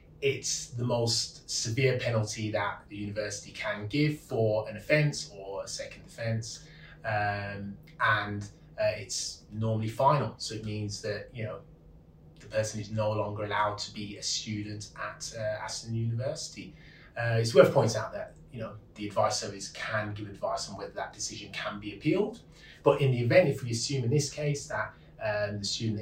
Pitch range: 105-130 Hz